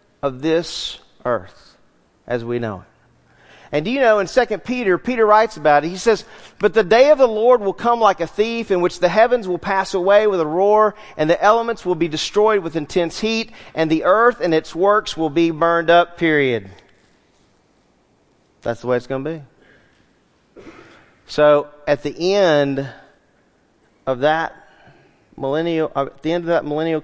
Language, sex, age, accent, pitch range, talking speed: English, male, 40-59, American, 145-200 Hz, 180 wpm